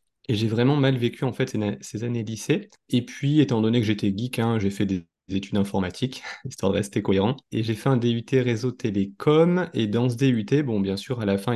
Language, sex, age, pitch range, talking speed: French, male, 20-39, 100-130 Hz, 230 wpm